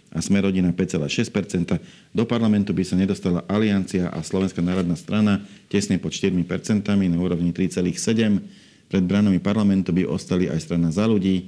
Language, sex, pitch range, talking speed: Slovak, male, 90-105 Hz, 145 wpm